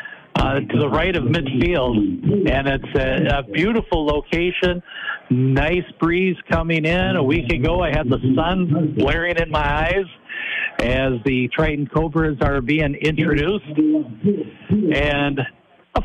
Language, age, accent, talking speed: English, 60-79, American, 135 wpm